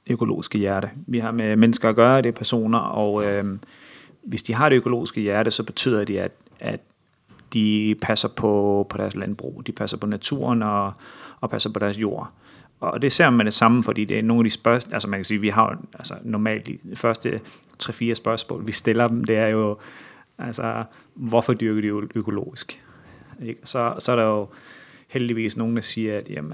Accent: native